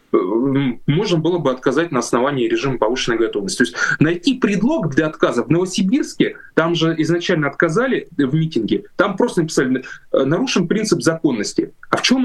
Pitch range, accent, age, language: 140-205 Hz, native, 20-39, Russian